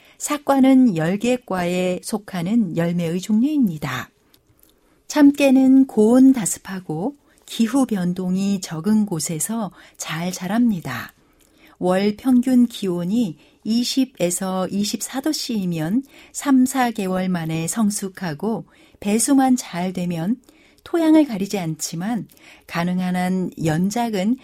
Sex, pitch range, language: female, 185-260 Hz, Korean